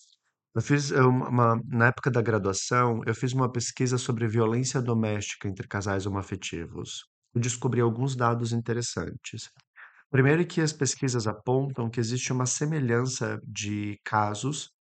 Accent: Brazilian